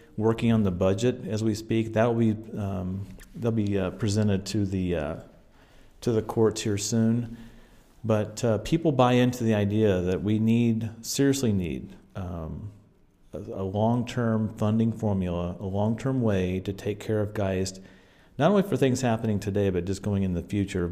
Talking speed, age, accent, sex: 170 wpm, 40-59, American, male